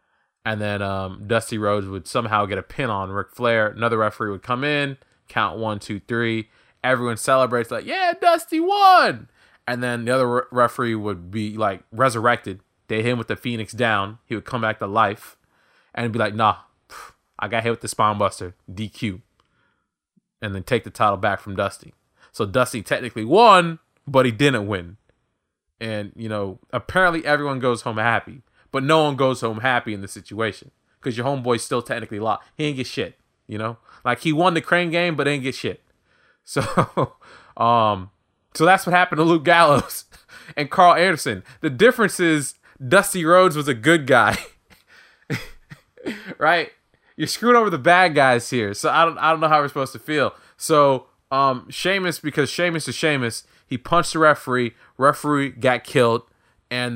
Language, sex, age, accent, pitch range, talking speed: English, male, 20-39, American, 110-150 Hz, 180 wpm